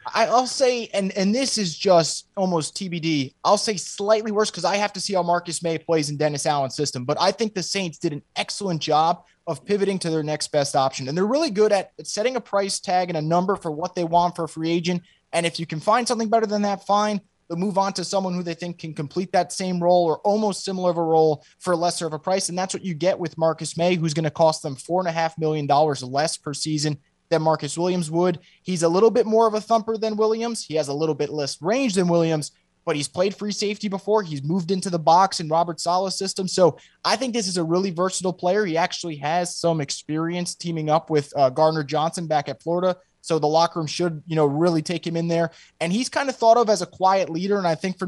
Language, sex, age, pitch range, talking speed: English, male, 20-39, 160-195 Hz, 255 wpm